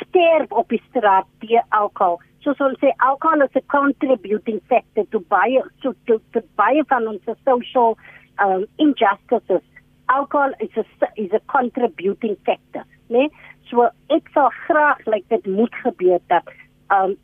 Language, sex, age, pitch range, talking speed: Dutch, female, 60-79, 215-285 Hz, 145 wpm